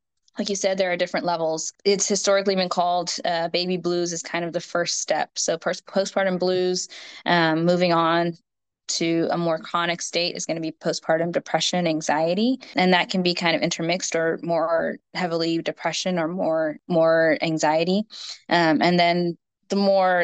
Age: 10-29